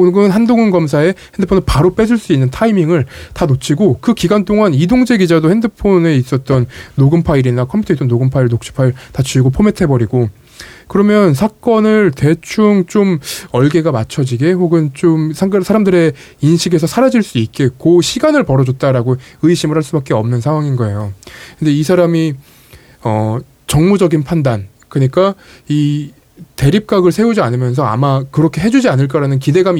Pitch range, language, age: 130-180 Hz, Korean, 20-39